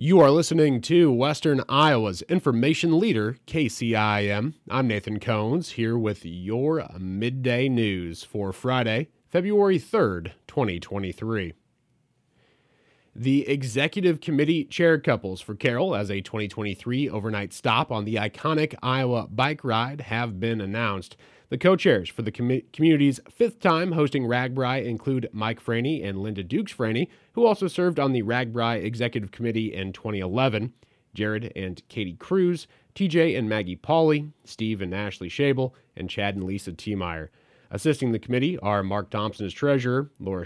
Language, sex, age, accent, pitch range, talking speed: English, male, 30-49, American, 105-140 Hz, 145 wpm